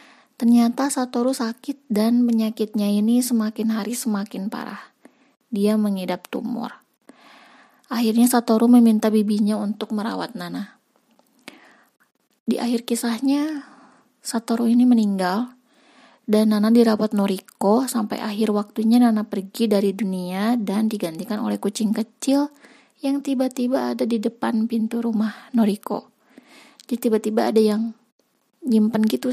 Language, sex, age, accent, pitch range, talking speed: Indonesian, female, 20-39, native, 215-255 Hz, 115 wpm